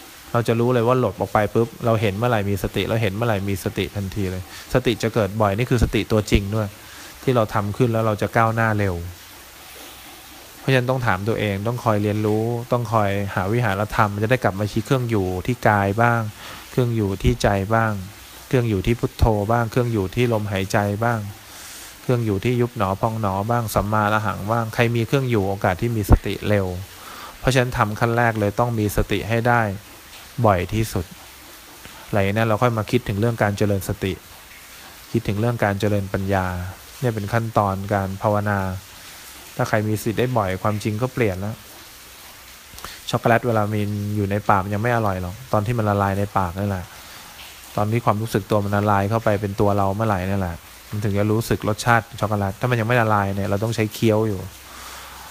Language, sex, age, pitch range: English, male, 20-39, 100-115 Hz